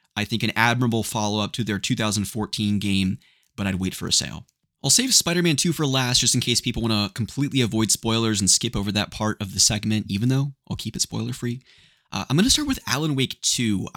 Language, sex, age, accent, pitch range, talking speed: English, male, 20-39, American, 100-120 Hz, 230 wpm